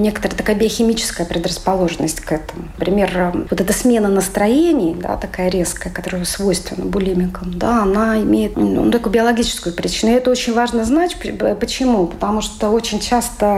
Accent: native